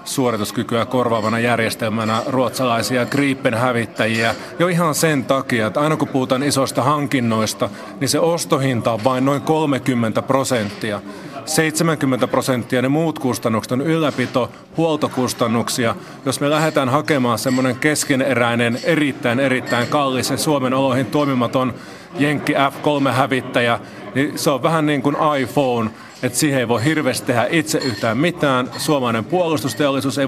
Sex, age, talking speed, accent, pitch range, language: male, 30-49, 130 wpm, native, 120-145 Hz, Finnish